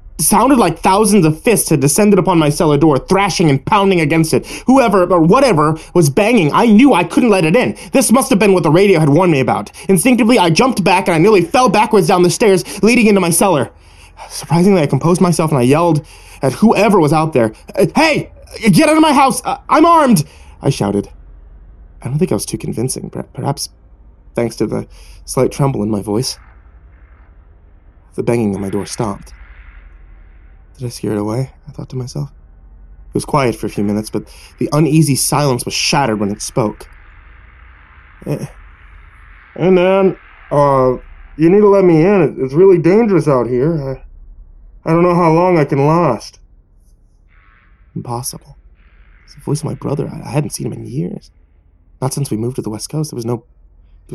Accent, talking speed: American, 195 wpm